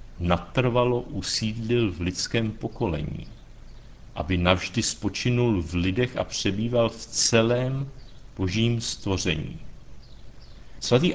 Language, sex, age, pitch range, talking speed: Czech, male, 60-79, 95-125 Hz, 90 wpm